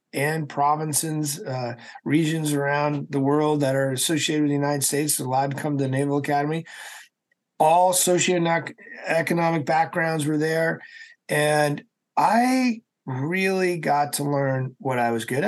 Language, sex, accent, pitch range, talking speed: English, male, American, 125-165 Hz, 145 wpm